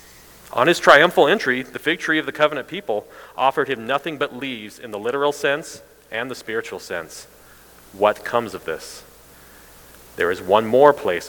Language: English